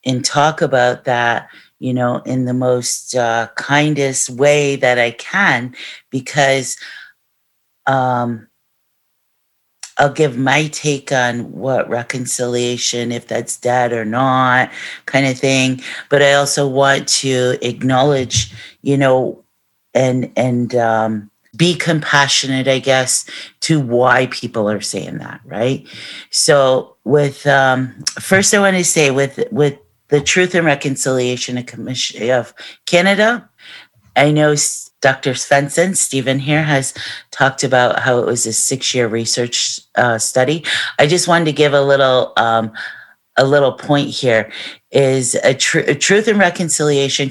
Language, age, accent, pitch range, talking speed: English, 40-59, American, 125-145 Hz, 135 wpm